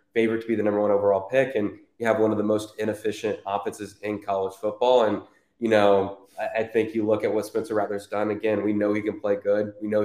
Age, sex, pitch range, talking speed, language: 20-39, male, 100-110 Hz, 250 wpm, English